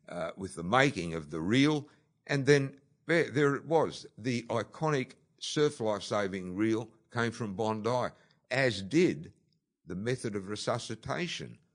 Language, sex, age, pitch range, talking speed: English, male, 60-79, 95-130 Hz, 135 wpm